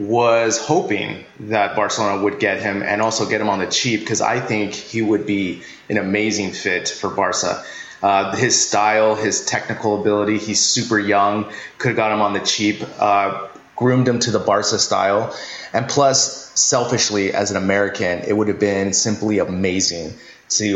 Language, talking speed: English, 175 wpm